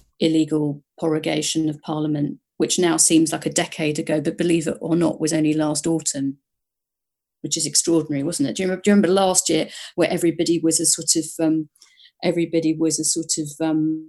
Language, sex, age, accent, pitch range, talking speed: English, female, 40-59, British, 155-170 Hz, 195 wpm